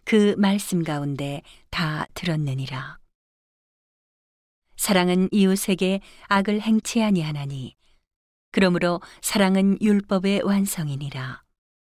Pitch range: 155-200 Hz